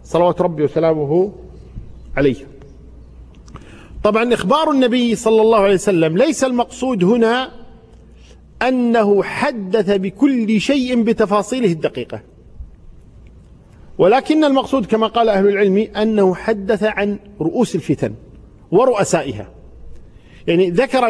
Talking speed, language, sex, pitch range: 95 wpm, Arabic, male, 190-250 Hz